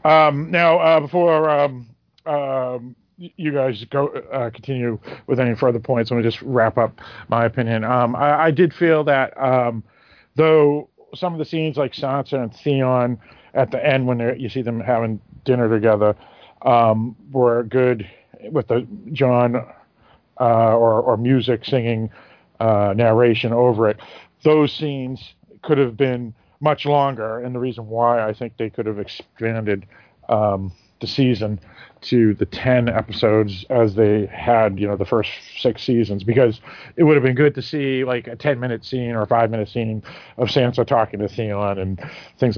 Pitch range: 110-130 Hz